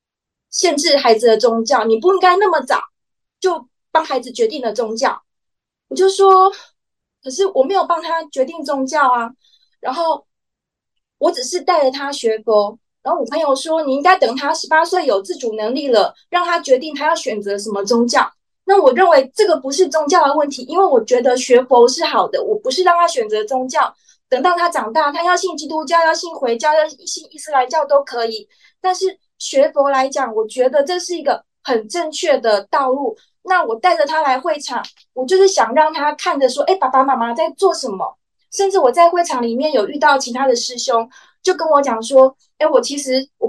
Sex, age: female, 20-39